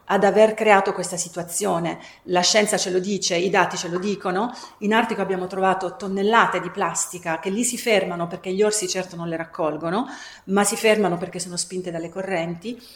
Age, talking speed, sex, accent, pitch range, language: 40-59, 190 wpm, female, native, 180-220 Hz, Italian